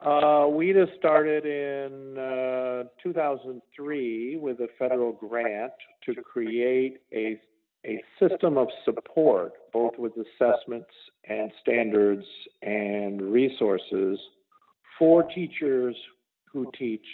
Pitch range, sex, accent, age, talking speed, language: 110-145 Hz, male, American, 50-69, 100 wpm, English